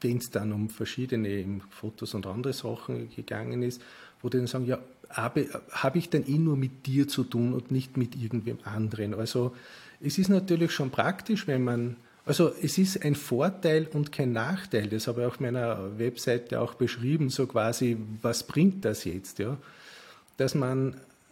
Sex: male